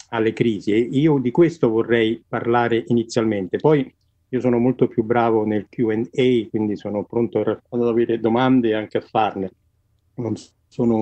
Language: Italian